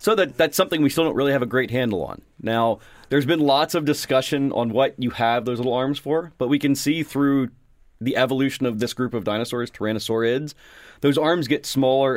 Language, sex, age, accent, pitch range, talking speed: English, male, 30-49, American, 115-140 Hz, 215 wpm